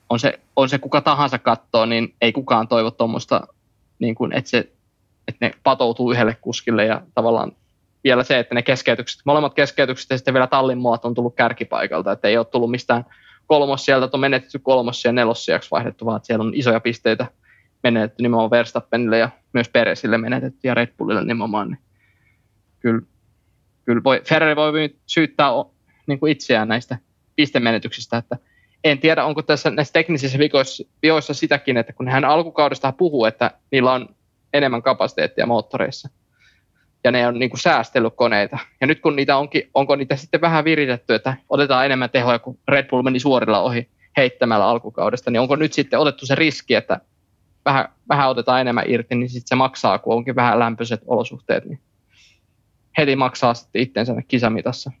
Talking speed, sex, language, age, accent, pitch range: 165 wpm, male, Finnish, 20-39, native, 115-140 Hz